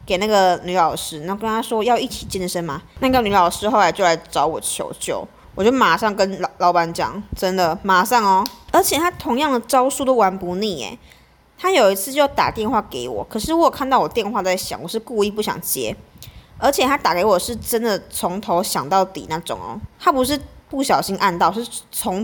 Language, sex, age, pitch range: Chinese, female, 20-39, 180-245 Hz